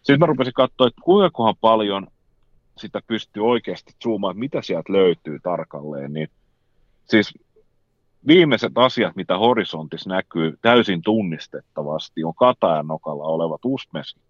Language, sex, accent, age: Finnish, male, native, 30-49